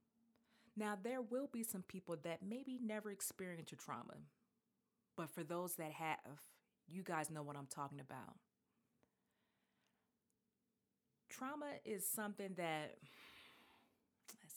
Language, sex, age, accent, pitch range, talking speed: English, female, 30-49, American, 155-220 Hz, 120 wpm